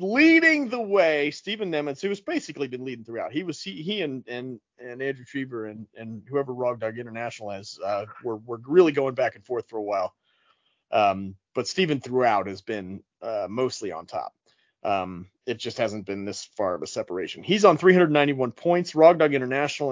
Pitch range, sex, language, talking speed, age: 110-175 Hz, male, English, 190 wpm, 30-49